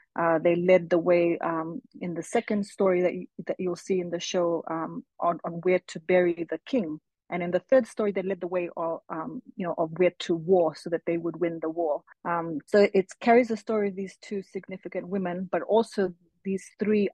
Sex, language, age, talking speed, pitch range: female, English, 30-49, 230 wpm, 170-200 Hz